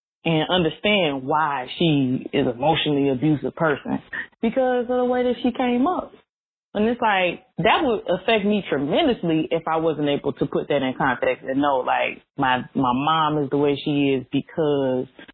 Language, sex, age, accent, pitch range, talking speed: English, female, 20-39, American, 145-210 Hz, 175 wpm